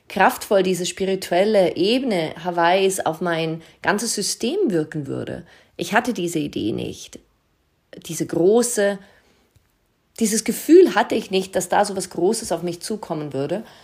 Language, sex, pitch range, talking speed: German, female, 185-225 Hz, 140 wpm